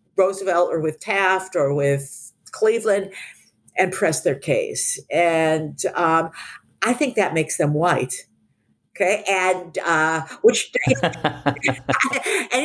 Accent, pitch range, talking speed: American, 140-205 Hz, 115 wpm